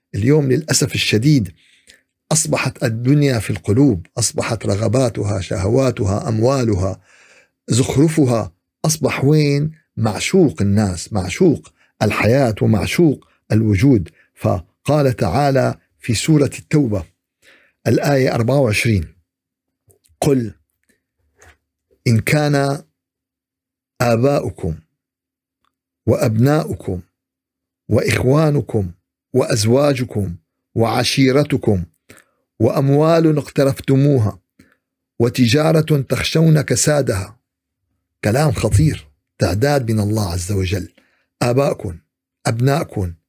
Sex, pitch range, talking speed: male, 100-140 Hz, 70 wpm